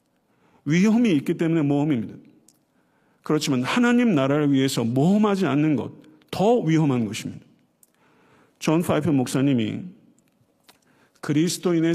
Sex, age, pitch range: male, 50-69, 130-165 Hz